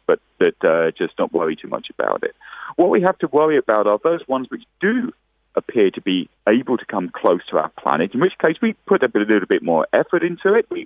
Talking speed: 245 wpm